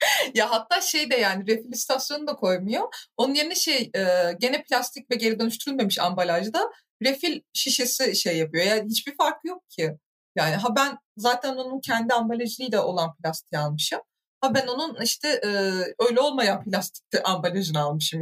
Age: 30-49